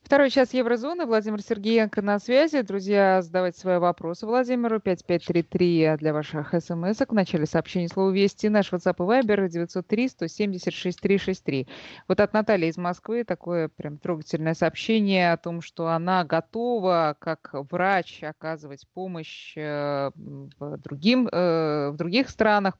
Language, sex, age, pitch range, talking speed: Russian, female, 20-39, 160-215 Hz, 130 wpm